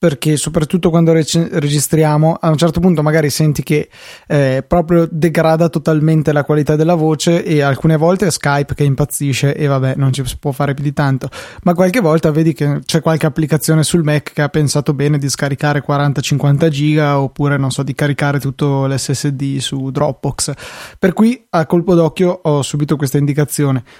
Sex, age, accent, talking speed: male, 20-39, native, 180 wpm